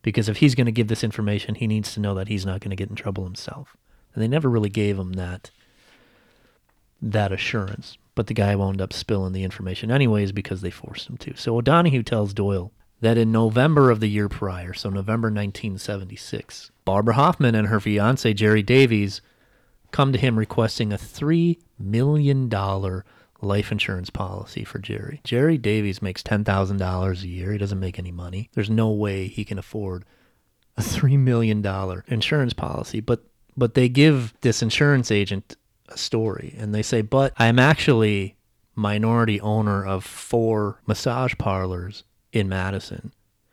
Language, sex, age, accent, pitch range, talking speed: English, male, 30-49, American, 100-115 Hz, 170 wpm